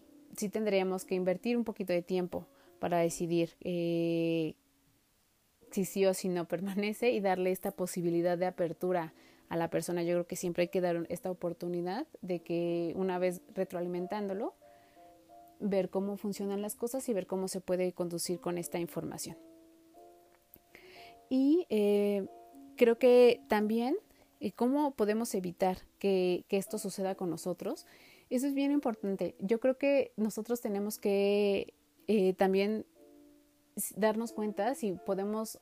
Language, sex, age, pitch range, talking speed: Spanish, female, 30-49, 180-225 Hz, 140 wpm